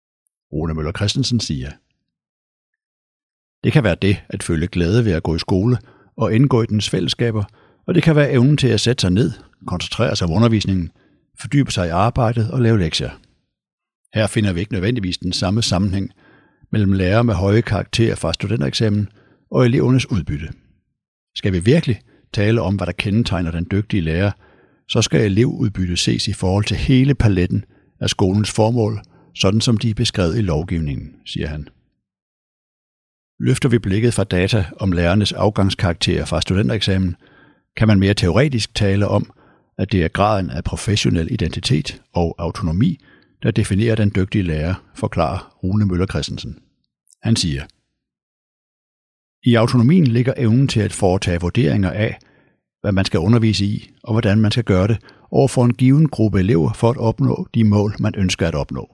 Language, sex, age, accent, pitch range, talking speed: Danish, male, 60-79, native, 95-115 Hz, 165 wpm